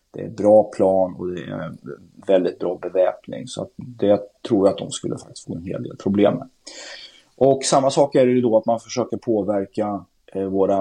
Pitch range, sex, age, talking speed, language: 95-110 Hz, male, 30-49, 195 wpm, Swedish